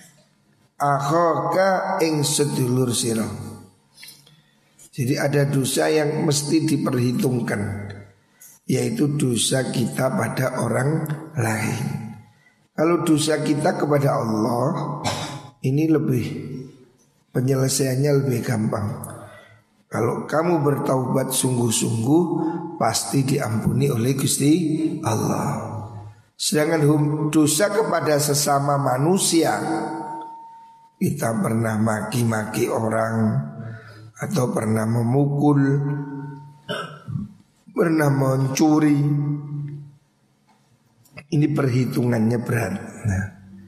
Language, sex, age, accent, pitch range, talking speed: Indonesian, male, 50-69, native, 115-150 Hz, 70 wpm